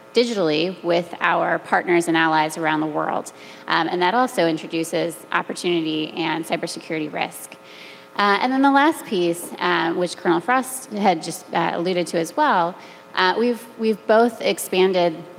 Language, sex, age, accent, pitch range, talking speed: English, female, 20-39, American, 165-190 Hz, 155 wpm